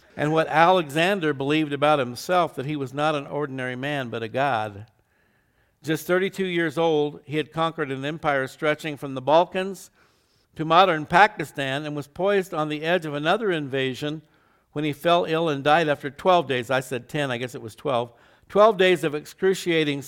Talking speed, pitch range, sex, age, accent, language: 185 wpm, 135-165 Hz, male, 60-79, American, English